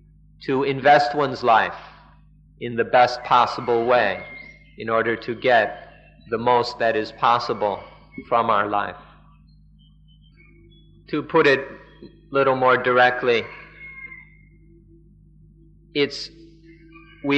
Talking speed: 105 wpm